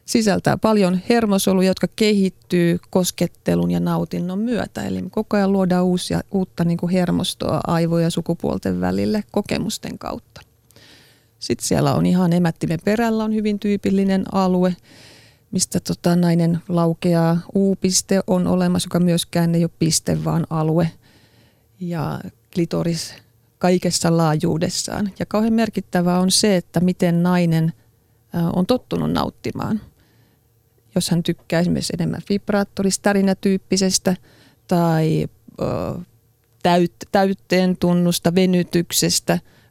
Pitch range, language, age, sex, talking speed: 160-190 Hz, Finnish, 30-49, female, 110 wpm